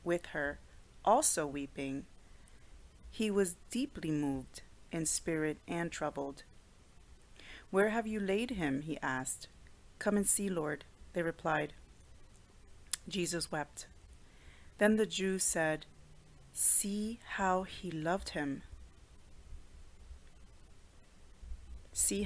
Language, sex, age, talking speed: English, female, 30-49, 100 wpm